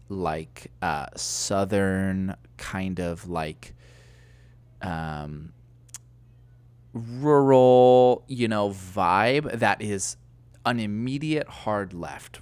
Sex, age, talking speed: male, 20-39, 80 wpm